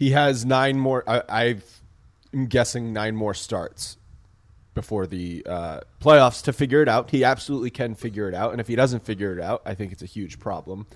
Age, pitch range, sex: 30-49, 100-130 Hz, male